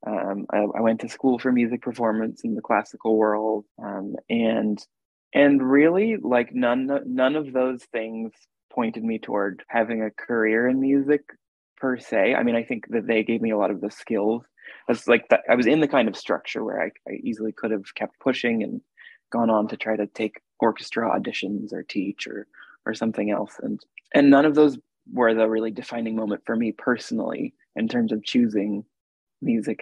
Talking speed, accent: 195 wpm, American